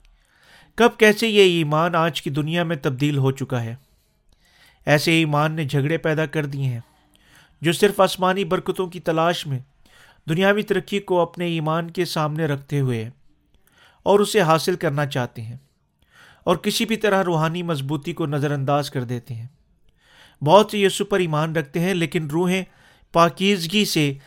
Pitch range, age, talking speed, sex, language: 145-185 Hz, 40-59, 160 wpm, male, Urdu